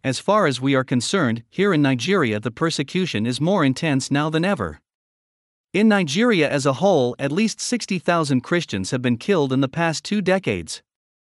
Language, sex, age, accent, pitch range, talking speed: English, male, 50-69, American, 130-190 Hz, 180 wpm